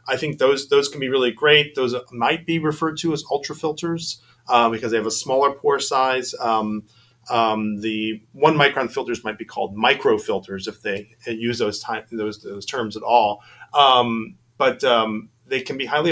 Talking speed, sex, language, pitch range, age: 195 wpm, male, English, 110-140 Hz, 30-49